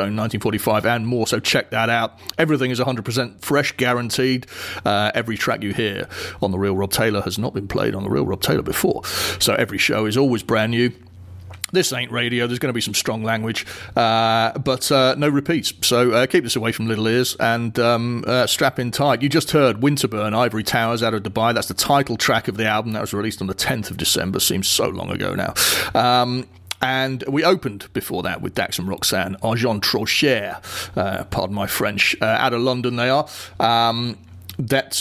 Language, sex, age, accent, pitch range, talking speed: English, male, 30-49, British, 110-130 Hz, 210 wpm